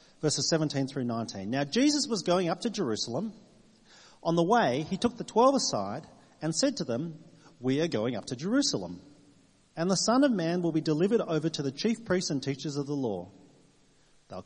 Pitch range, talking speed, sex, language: 125-195 Hz, 200 wpm, male, English